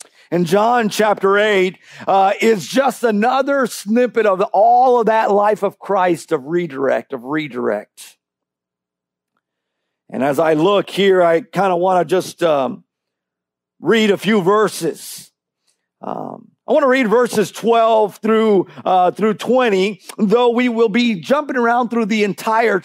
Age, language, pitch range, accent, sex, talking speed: 50-69, English, 165-220 Hz, American, male, 140 wpm